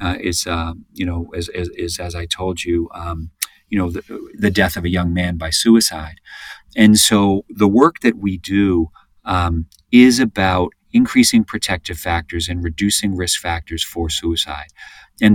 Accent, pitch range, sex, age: American, 85-100 Hz, male, 40-59